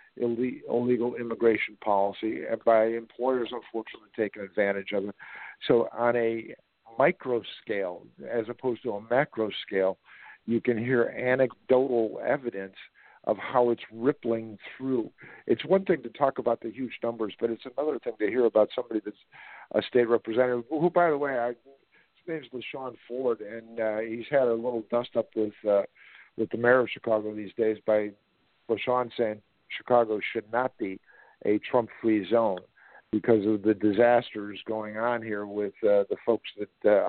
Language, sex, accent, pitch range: English, male, American, 105-120 Hz